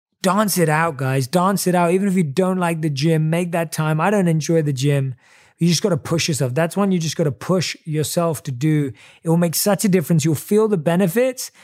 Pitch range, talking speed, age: 130-175 Hz, 245 wpm, 20-39